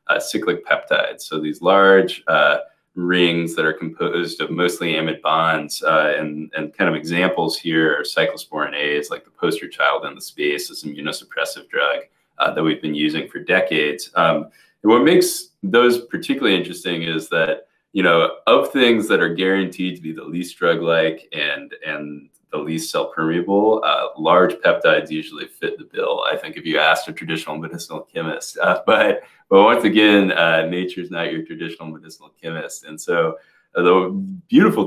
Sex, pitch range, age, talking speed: male, 80-105 Hz, 20-39, 180 wpm